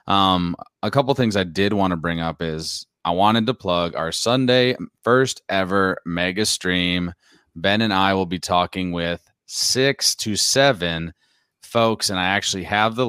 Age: 30-49